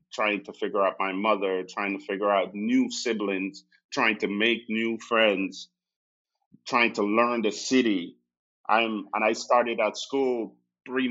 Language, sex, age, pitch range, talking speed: English, male, 30-49, 100-120 Hz, 155 wpm